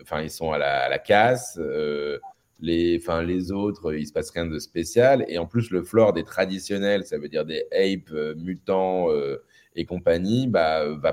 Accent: French